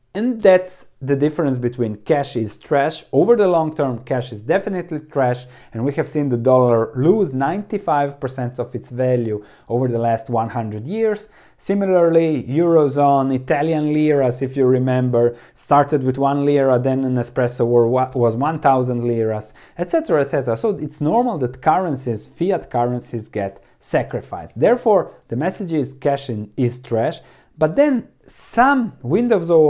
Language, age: English, 30-49